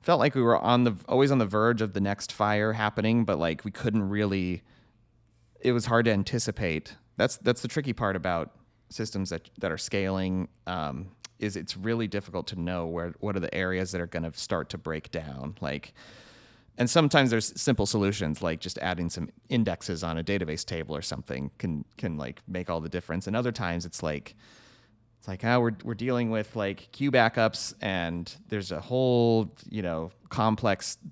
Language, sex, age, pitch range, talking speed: English, male, 30-49, 90-115 Hz, 200 wpm